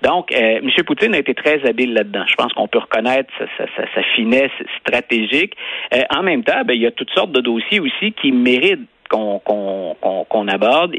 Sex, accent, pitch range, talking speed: male, Canadian, 115-155 Hz, 190 wpm